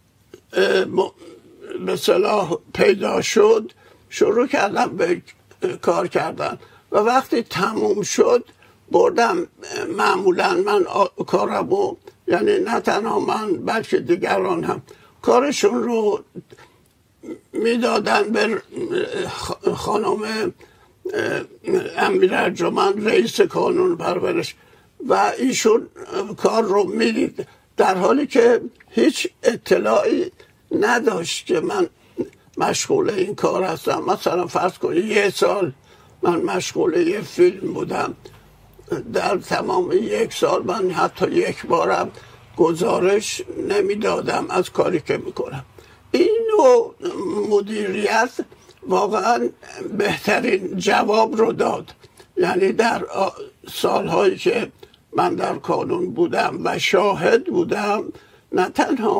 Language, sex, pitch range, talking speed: English, male, 290-405 Hz, 100 wpm